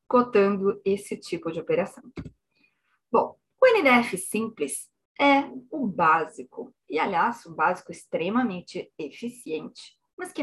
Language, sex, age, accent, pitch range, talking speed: Portuguese, female, 20-39, Brazilian, 190-270 Hz, 115 wpm